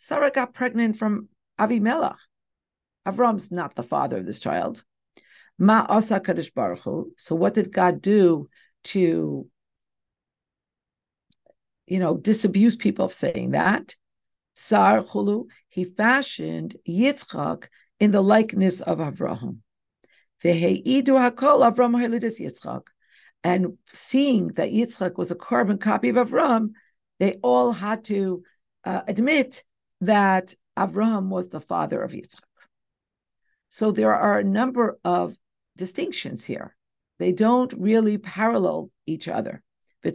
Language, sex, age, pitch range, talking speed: English, female, 50-69, 180-235 Hz, 110 wpm